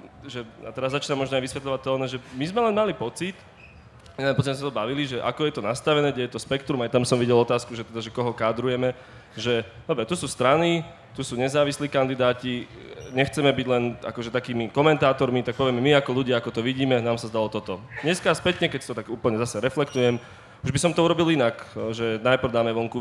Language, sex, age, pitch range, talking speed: Slovak, male, 20-39, 115-135 Hz, 215 wpm